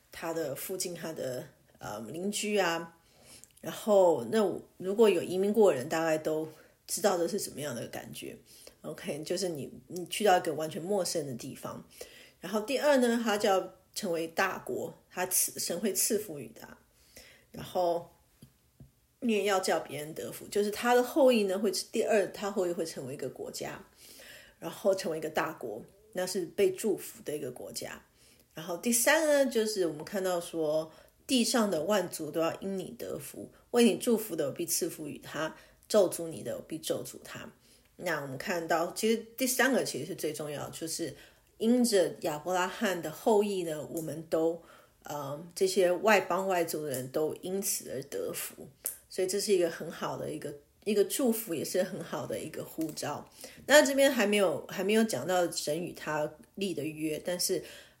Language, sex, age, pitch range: English, female, 30-49, 165-210 Hz